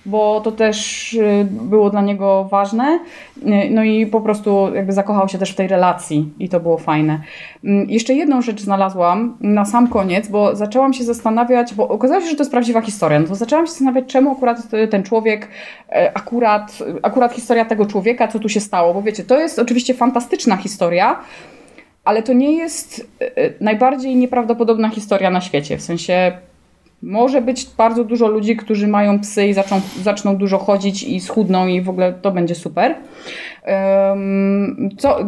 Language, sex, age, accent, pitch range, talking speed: Polish, female, 20-39, native, 195-245 Hz, 170 wpm